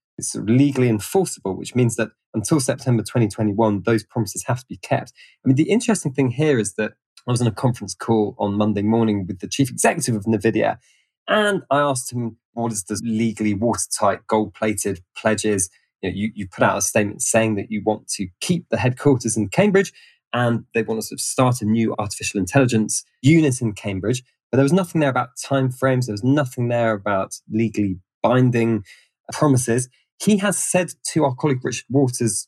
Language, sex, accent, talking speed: English, male, British, 185 wpm